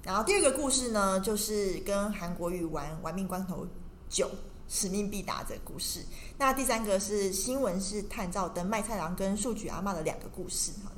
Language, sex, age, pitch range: Chinese, female, 20-39, 185-225 Hz